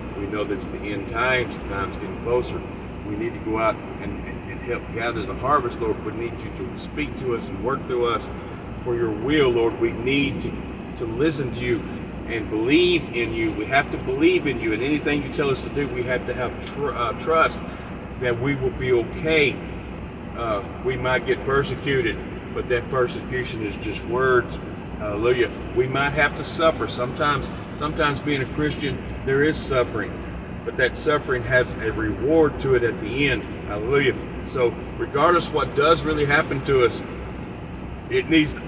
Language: English